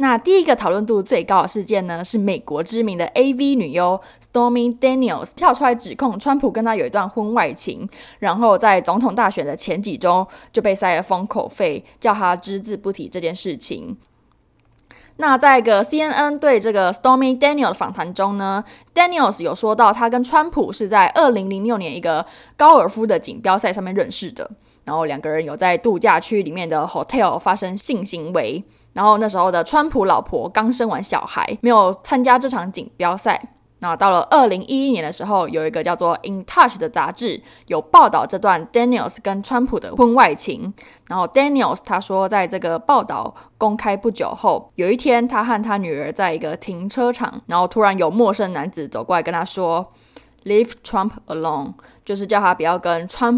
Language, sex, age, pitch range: Chinese, female, 20-39, 185-245 Hz